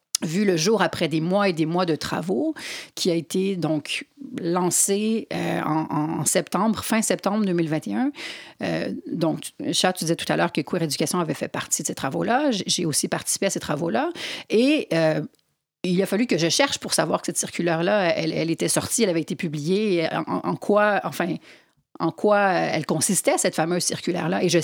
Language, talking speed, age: French, 195 wpm, 40-59